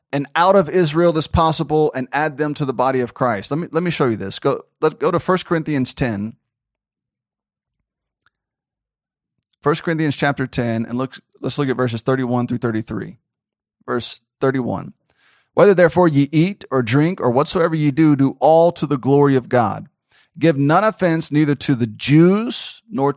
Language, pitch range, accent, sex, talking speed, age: English, 130-165 Hz, American, male, 175 wpm, 30-49